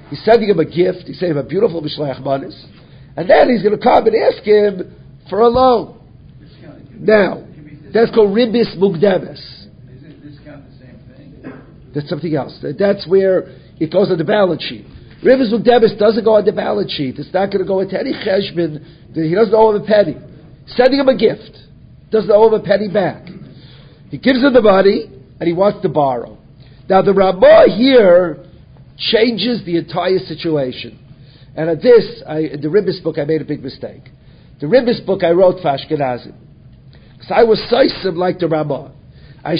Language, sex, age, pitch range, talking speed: English, male, 50-69, 150-210 Hz, 185 wpm